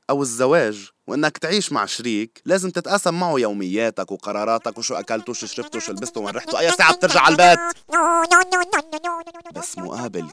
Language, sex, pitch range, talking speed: Arabic, male, 95-155 Hz, 135 wpm